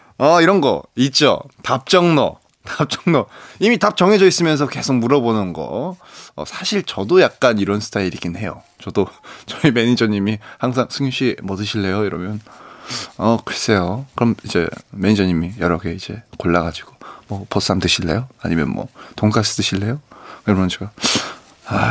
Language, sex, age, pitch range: Korean, male, 20-39, 100-145 Hz